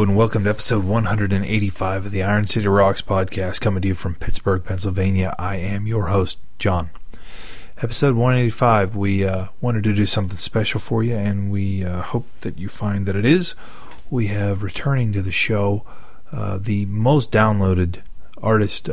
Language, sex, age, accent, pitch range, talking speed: English, male, 30-49, American, 90-105 Hz, 170 wpm